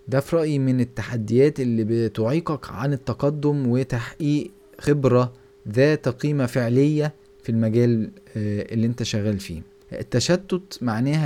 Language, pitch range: Arabic, 110-140 Hz